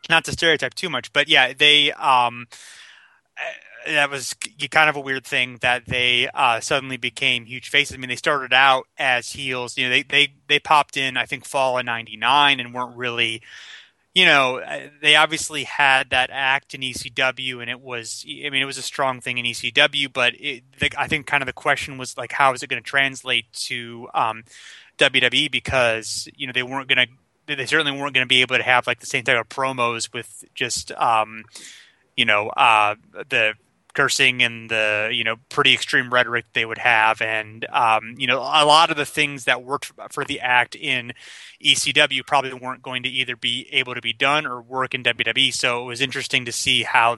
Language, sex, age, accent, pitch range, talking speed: English, male, 30-49, American, 120-140 Hz, 205 wpm